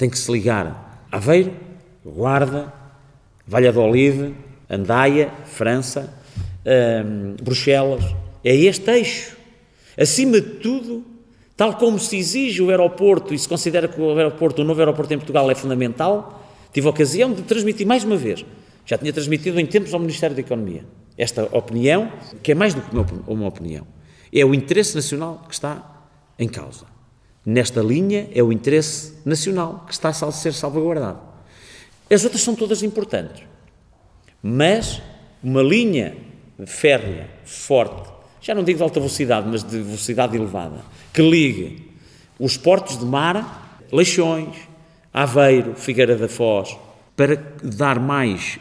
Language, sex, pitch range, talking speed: Portuguese, male, 115-170 Hz, 145 wpm